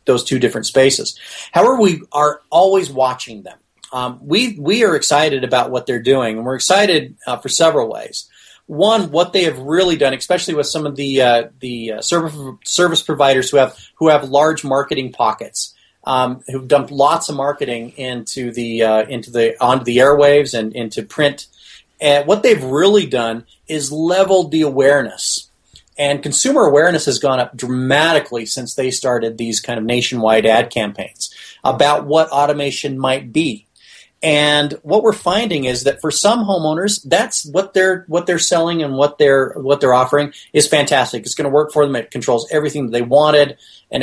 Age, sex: 30-49, male